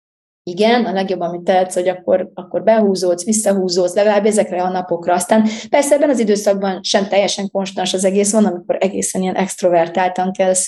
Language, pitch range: Hungarian, 180-205 Hz